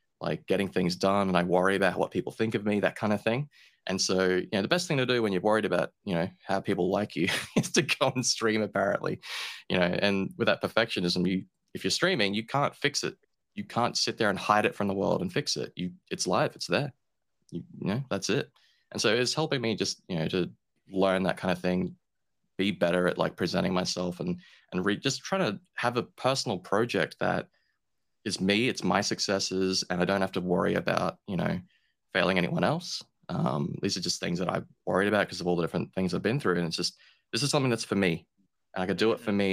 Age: 20-39